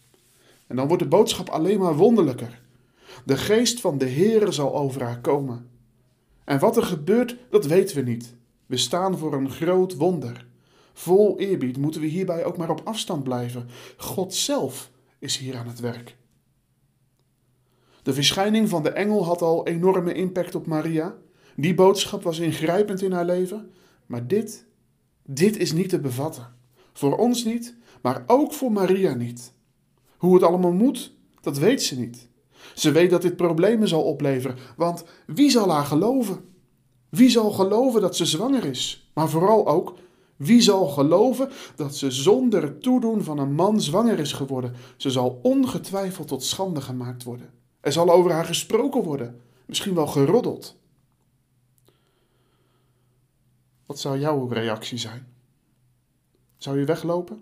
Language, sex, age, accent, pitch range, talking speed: Dutch, male, 50-69, Dutch, 125-190 Hz, 155 wpm